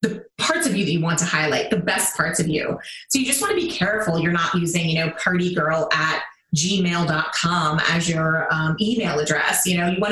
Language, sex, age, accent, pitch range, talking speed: English, female, 20-39, American, 160-210 Hz, 225 wpm